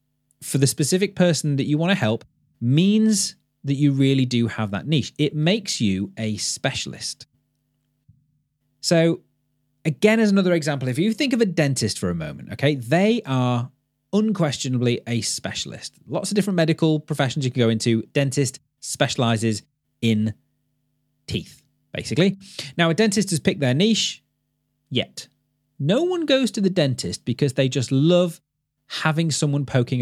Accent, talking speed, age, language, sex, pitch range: British, 155 wpm, 30-49, English, male, 125-165 Hz